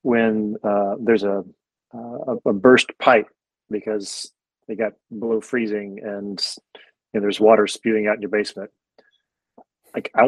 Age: 40-59